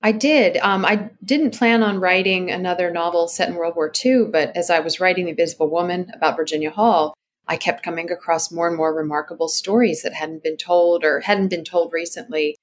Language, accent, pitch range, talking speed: English, American, 160-195 Hz, 210 wpm